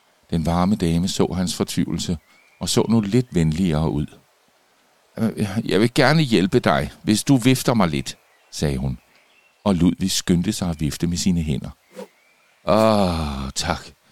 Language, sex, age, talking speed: Danish, male, 60-79, 150 wpm